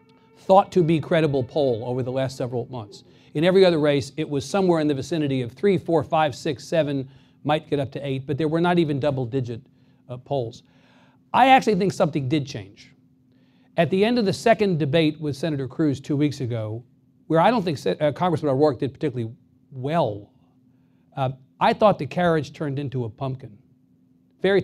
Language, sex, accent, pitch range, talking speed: English, male, American, 135-175 Hz, 185 wpm